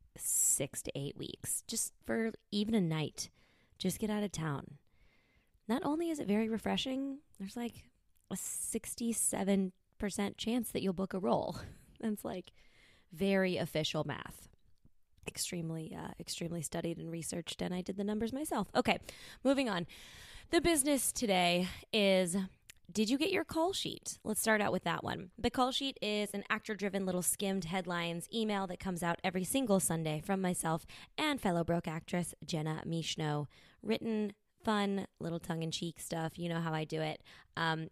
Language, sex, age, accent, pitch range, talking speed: English, female, 20-39, American, 165-220 Hz, 160 wpm